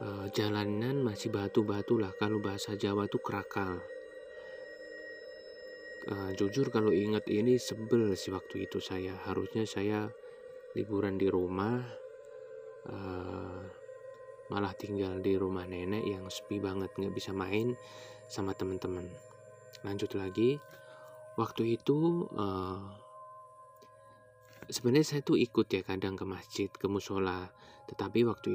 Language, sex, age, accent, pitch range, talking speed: Indonesian, male, 20-39, native, 100-130 Hz, 105 wpm